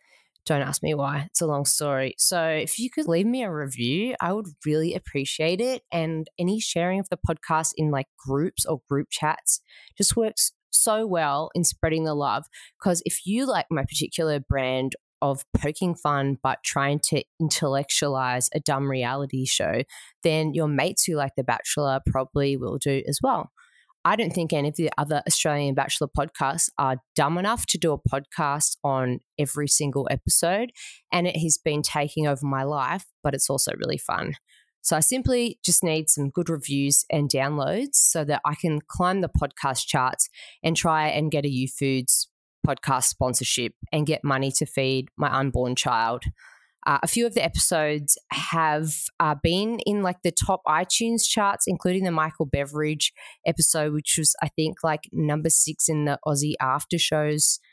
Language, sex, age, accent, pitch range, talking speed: English, female, 20-39, Australian, 140-165 Hz, 180 wpm